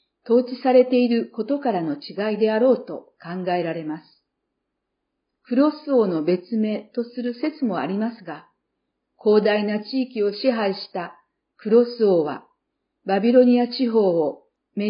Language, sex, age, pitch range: Japanese, female, 50-69, 195-255 Hz